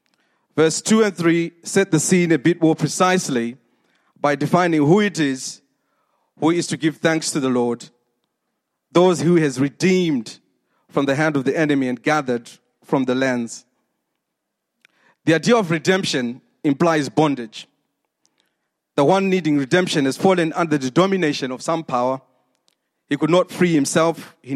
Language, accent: English, South African